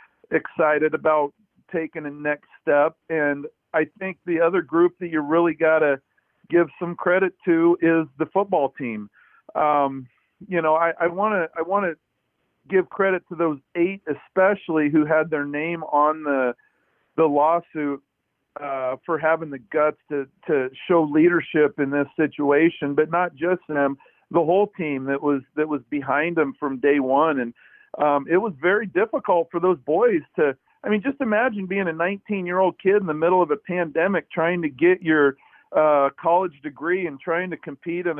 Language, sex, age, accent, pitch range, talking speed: English, male, 50-69, American, 145-180 Hz, 175 wpm